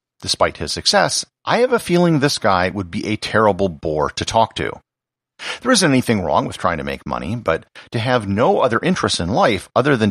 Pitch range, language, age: 100-135 Hz, English, 50-69